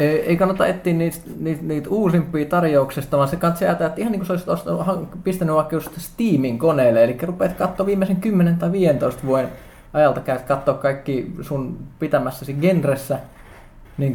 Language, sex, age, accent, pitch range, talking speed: Finnish, male, 20-39, native, 125-165 Hz, 155 wpm